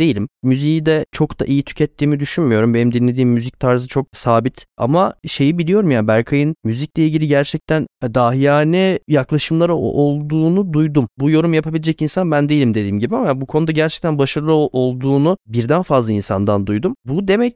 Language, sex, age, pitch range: Turkish, male, 20-39, 125-165 Hz